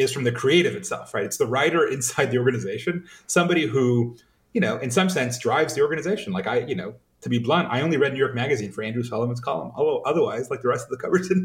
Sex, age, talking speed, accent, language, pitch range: male, 30-49, 250 wpm, American, English, 120-180 Hz